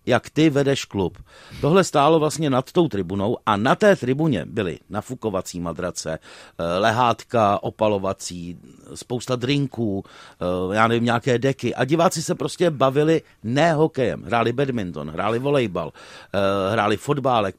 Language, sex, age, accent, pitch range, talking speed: Czech, male, 50-69, native, 115-160 Hz, 130 wpm